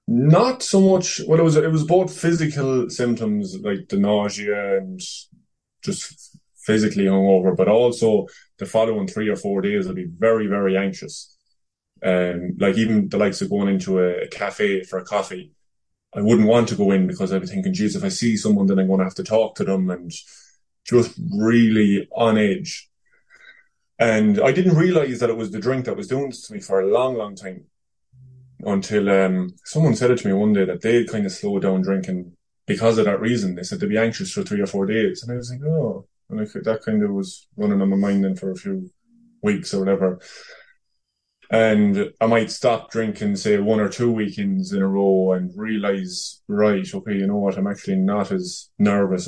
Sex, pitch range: male, 95-155 Hz